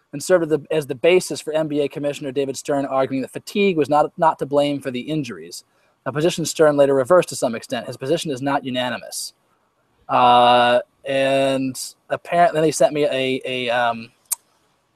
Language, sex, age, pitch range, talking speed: English, male, 20-39, 125-165 Hz, 180 wpm